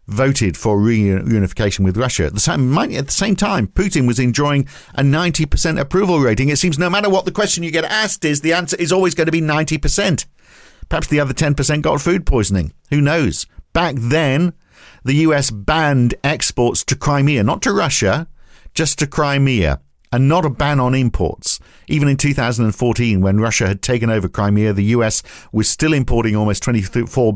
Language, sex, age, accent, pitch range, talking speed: English, male, 50-69, British, 110-150 Hz, 180 wpm